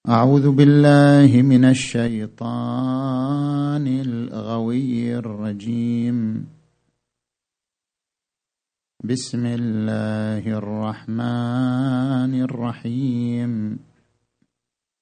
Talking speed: 40 wpm